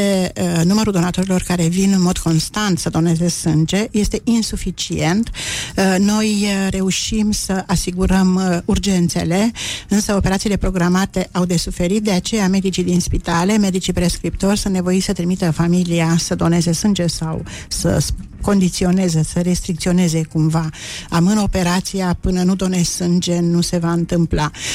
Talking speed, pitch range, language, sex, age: 145 wpm, 175-195 Hz, Romanian, female, 50-69